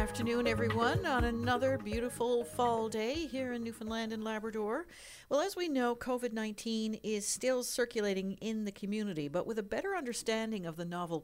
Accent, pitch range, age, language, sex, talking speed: American, 180-250 Hz, 50-69, English, female, 165 wpm